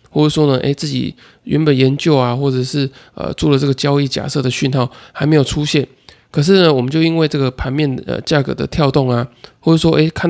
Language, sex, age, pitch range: Chinese, male, 20-39, 130-155 Hz